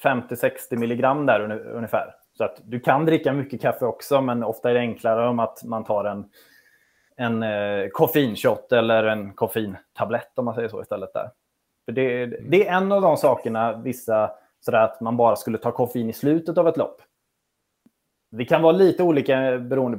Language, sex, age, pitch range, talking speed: Swedish, male, 20-39, 110-140 Hz, 180 wpm